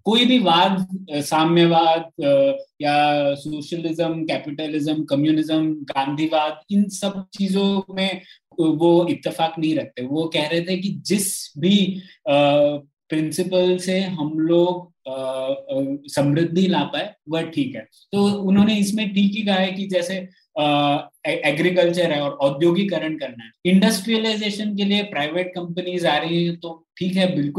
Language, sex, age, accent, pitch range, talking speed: Hindi, male, 20-39, native, 150-195 Hz, 120 wpm